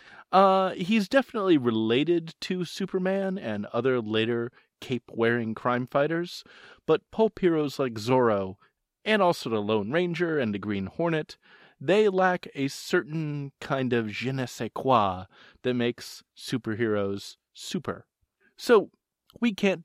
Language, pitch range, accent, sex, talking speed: English, 115-175 Hz, American, male, 130 wpm